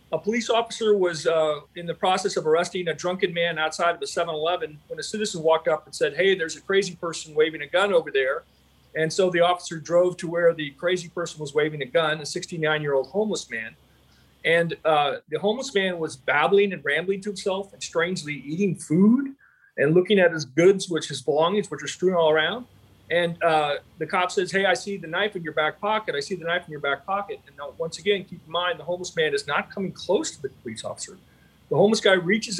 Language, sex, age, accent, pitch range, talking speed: English, male, 40-59, American, 160-200 Hz, 230 wpm